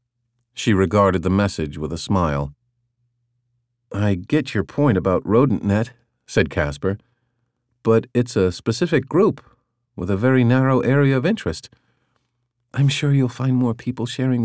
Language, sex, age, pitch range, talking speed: English, male, 50-69, 105-125 Hz, 140 wpm